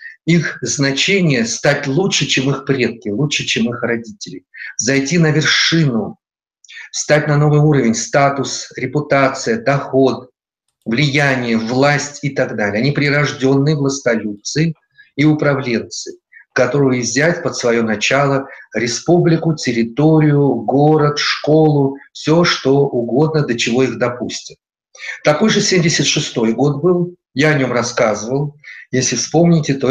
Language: Russian